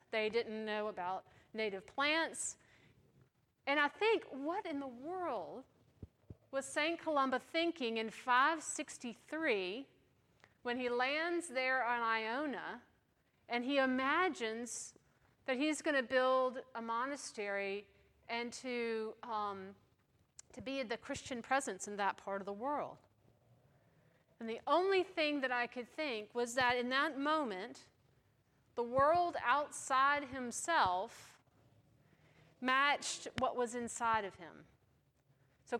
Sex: female